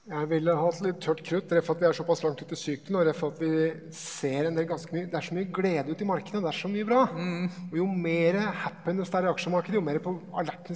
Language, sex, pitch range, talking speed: English, male, 160-185 Hz, 310 wpm